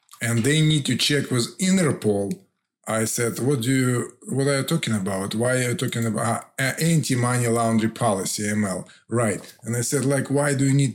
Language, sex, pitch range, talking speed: English, male, 115-135 Hz, 195 wpm